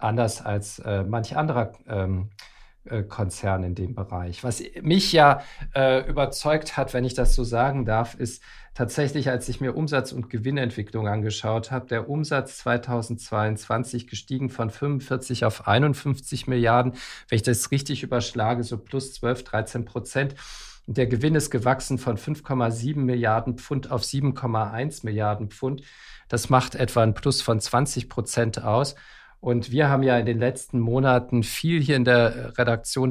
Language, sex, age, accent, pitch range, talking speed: German, male, 50-69, German, 115-135 Hz, 155 wpm